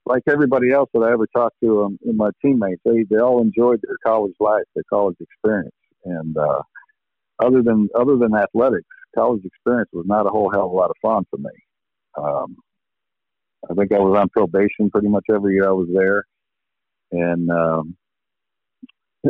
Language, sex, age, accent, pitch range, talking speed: English, male, 50-69, American, 105-135 Hz, 185 wpm